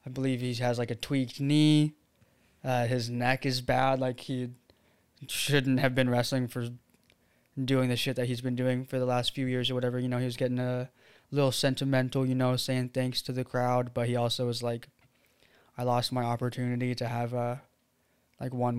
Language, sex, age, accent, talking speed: English, male, 20-39, American, 200 wpm